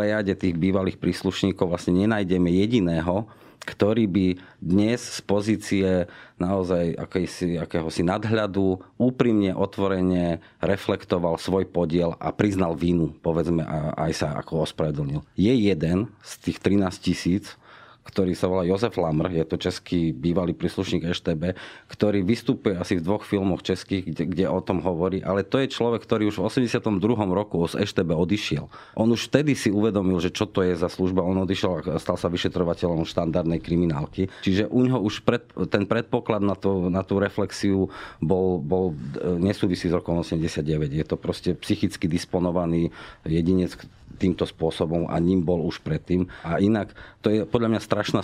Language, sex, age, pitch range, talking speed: Slovak, male, 30-49, 85-105 Hz, 155 wpm